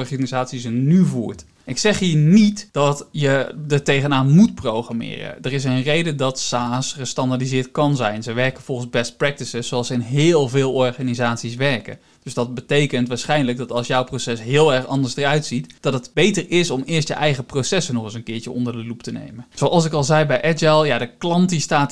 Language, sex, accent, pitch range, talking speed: Dutch, male, Dutch, 125-155 Hz, 210 wpm